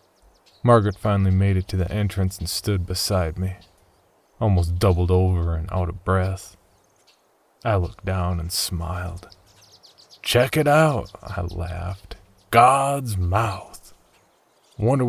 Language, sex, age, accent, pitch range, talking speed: English, male, 30-49, American, 90-105 Hz, 125 wpm